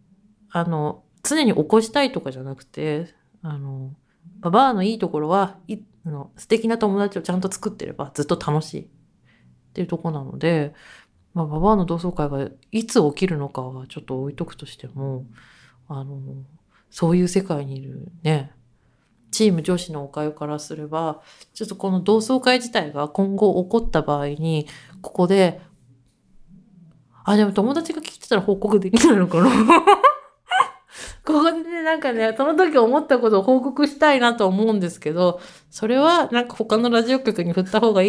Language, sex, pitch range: Japanese, female, 155-220 Hz